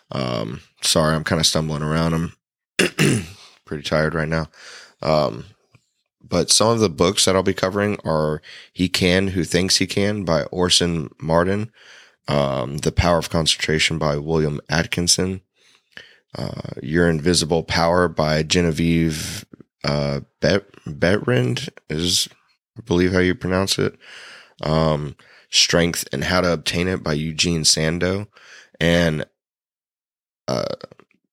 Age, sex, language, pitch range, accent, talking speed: 20-39, male, English, 80-90 Hz, American, 130 wpm